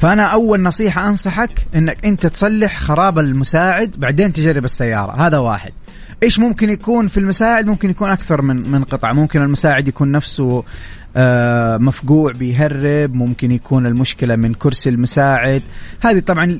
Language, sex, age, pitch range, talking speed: Arabic, male, 30-49, 135-180 Hz, 145 wpm